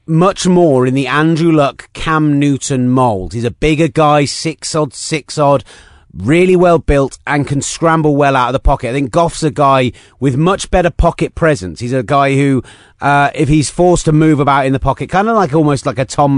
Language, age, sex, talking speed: English, 30-49, male, 215 wpm